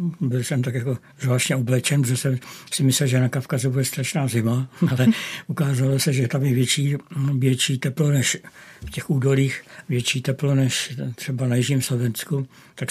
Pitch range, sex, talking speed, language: 125-145 Hz, male, 170 wpm, Czech